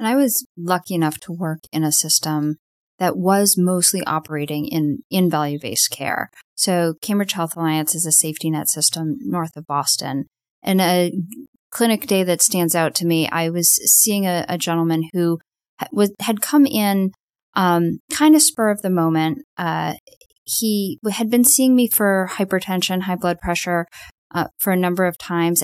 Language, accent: English, American